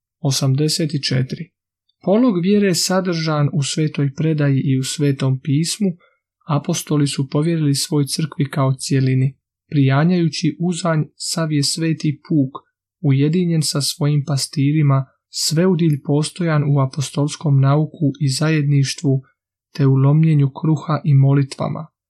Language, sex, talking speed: Croatian, male, 110 wpm